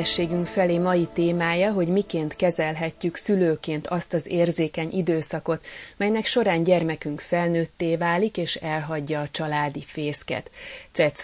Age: 30-49